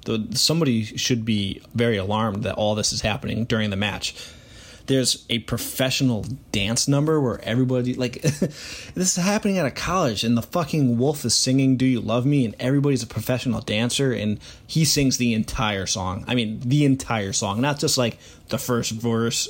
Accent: American